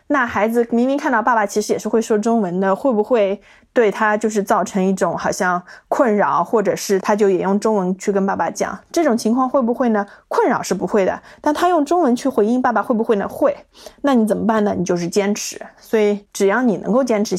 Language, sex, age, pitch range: Chinese, female, 20-39, 195-230 Hz